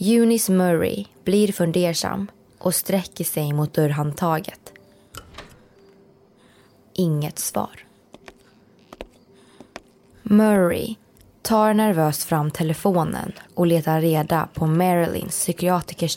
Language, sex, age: Swedish, female, 20-39